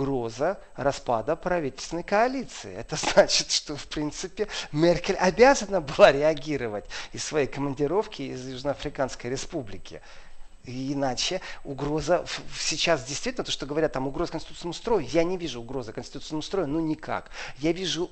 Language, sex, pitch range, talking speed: Russian, male, 135-170 Hz, 135 wpm